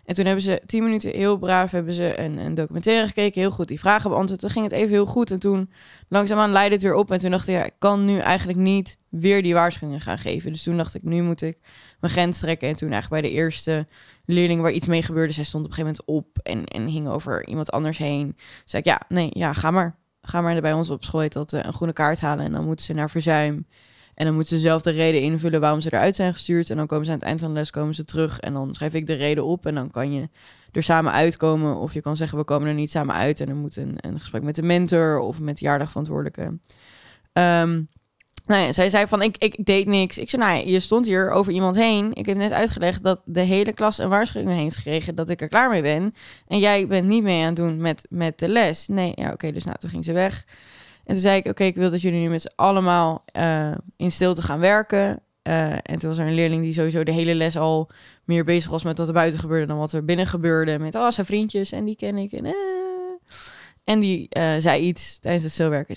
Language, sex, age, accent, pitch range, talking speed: Dutch, female, 20-39, Dutch, 155-190 Hz, 270 wpm